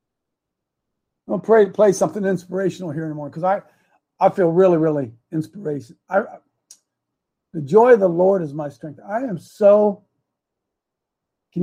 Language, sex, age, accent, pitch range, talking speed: English, male, 50-69, American, 150-185 Hz, 140 wpm